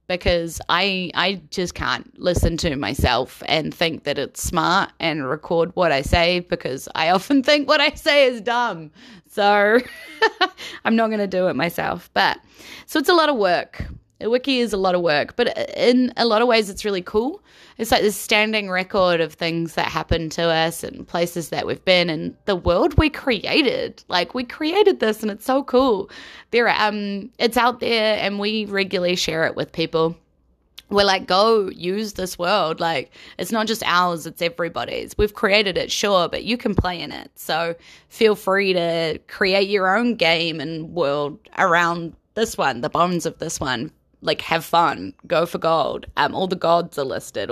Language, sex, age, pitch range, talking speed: English, female, 20-39, 170-235 Hz, 190 wpm